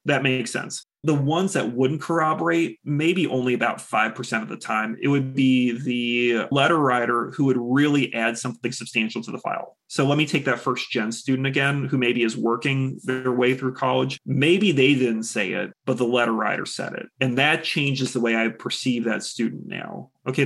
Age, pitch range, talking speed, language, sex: 30-49, 120-140 Hz, 200 wpm, English, male